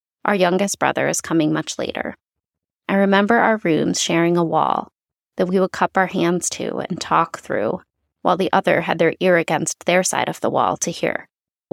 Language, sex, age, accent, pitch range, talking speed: English, female, 20-39, American, 160-185 Hz, 200 wpm